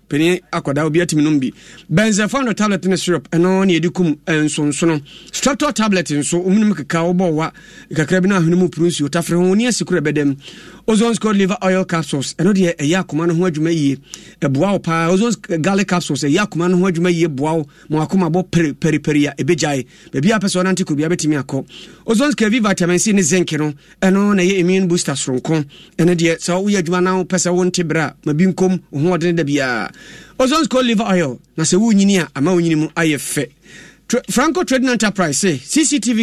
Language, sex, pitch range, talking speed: English, male, 160-205 Hz, 185 wpm